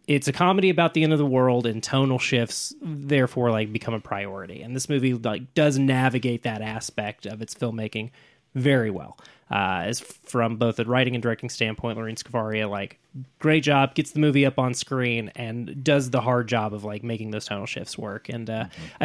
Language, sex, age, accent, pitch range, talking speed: English, male, 20-39, American, 110-145 Hz, 200 wpm